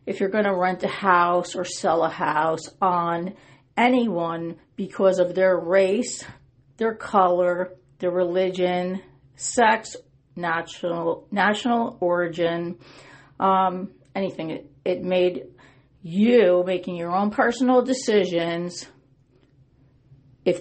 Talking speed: 110 wpm